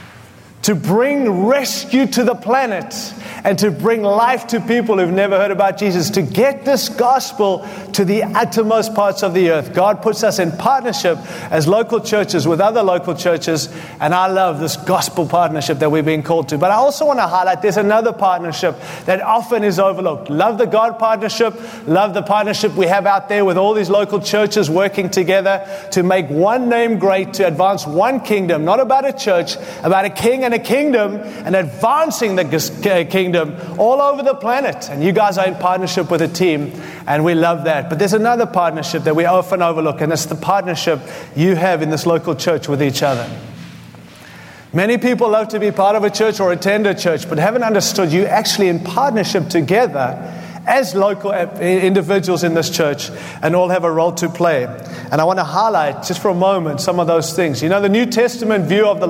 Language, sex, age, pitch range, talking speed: English, male, 30-49, 175-215 Hz, 200 wpm